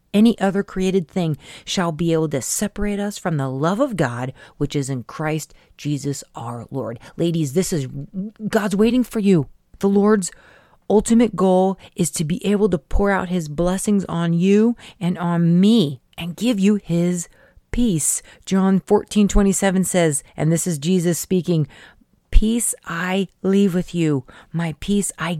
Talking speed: 165 wpm